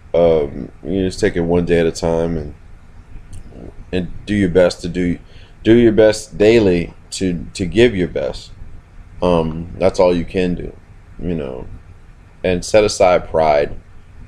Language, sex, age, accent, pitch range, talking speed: English, male, 30-49, American, 80-90 Hz, 160 wpm